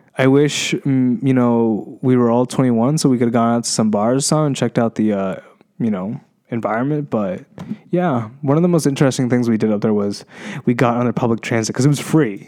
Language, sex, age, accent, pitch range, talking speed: English, male, 20-39, American, 110-140 Hz, 230 wpm